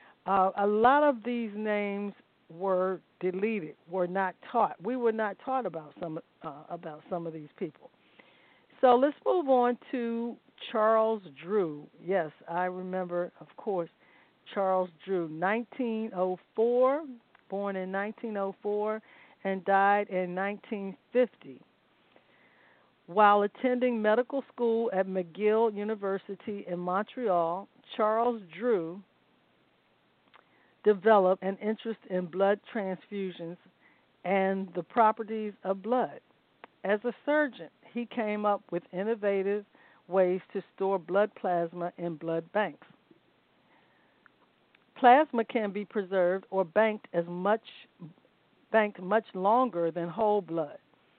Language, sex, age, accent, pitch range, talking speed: English, female, 50-69, American, 185-225 Hz, 115 wpm